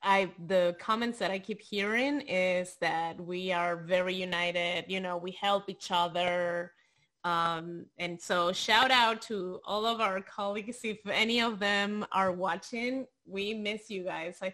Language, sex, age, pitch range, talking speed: English, female, 20-39, 180-225 Hz, 165 wpm